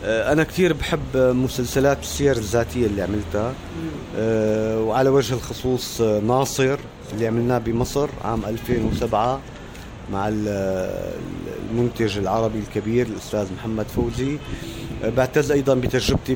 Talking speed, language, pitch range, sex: 105 wpm, Arabic, 115-140 Hz, male